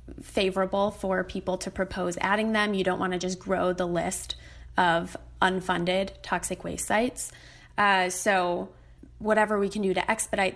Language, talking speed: English, 160 wpm